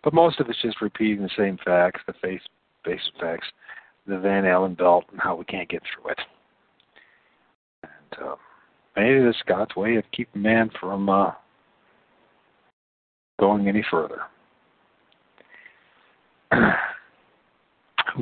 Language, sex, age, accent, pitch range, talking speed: English, male, 50-69, American, 95-115 Hz, 130 wpm